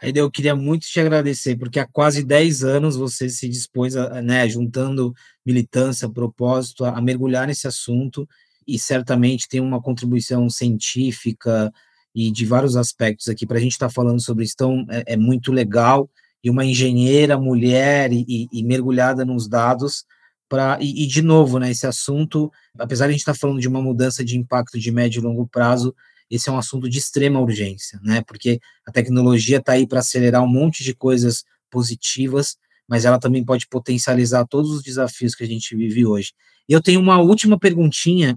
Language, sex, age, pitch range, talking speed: Portuguese, male, 20-39, 120-140 Hz, 180 wpm